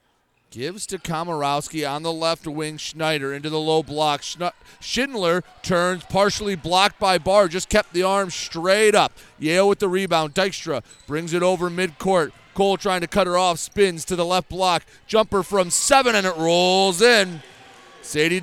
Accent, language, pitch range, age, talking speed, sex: American, English, 155-195 Hz, 30-49, 170 wpm, male